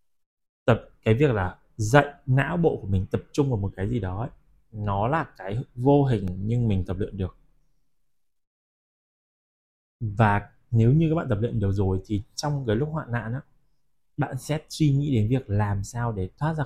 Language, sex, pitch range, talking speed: Vietnamese, male, 100-135 Hz, 195 wpm